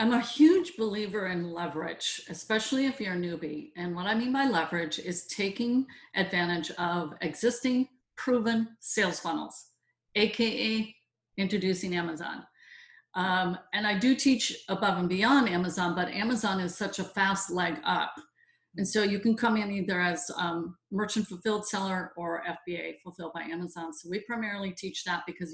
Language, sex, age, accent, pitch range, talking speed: English, female, 50-69, American, 180-235 Hz, 160 wpm